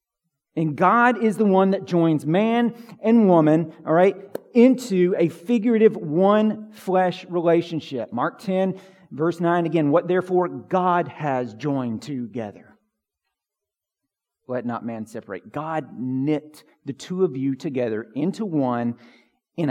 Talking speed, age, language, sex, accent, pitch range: 130 wpm, 40-59, English, male, American, 150-210 Hz